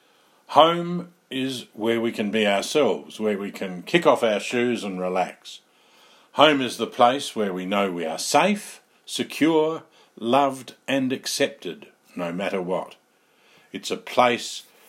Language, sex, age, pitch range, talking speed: English, male, 50-69, 100-135 Hz, 145 wpm